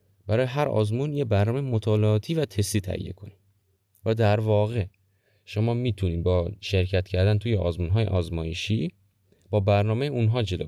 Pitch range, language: 90-105 Hz, Persian